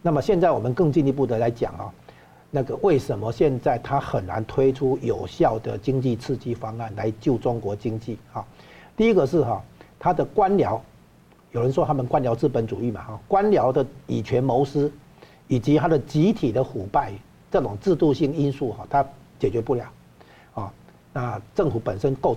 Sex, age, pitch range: male, 50-69, 120-160 Hz